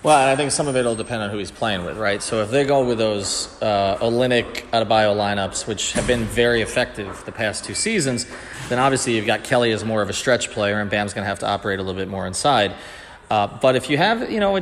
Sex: male